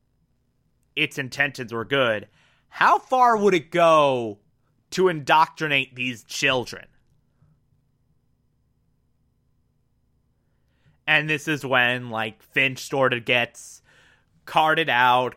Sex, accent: male, American